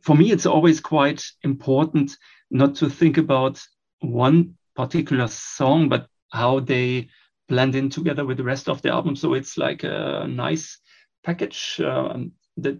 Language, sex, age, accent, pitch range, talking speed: English, male, 40-59, German, 135-160 Hz, 155 wpm